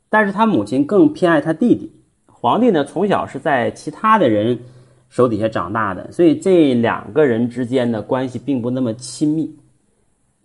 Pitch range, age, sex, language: 120-195 Hz, 30-49, male, Chinese